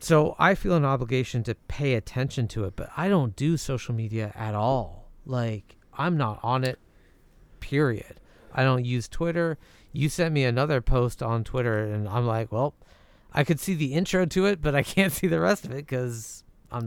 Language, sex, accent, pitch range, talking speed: English, male, American, 105-135 Hz, 200 wpm